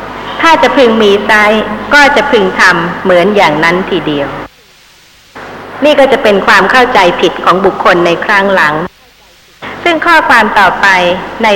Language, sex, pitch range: Thai, female, 185-250 Hz